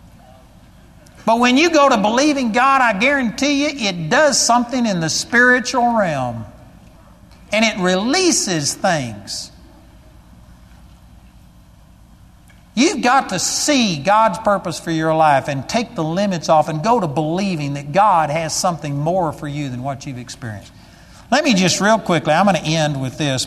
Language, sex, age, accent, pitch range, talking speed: English, male, 60-79, American, 150-215 Hz, 155 wpm